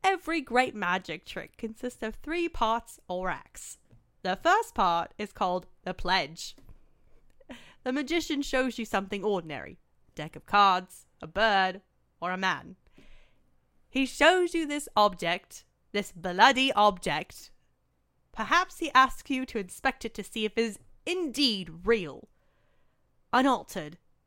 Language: English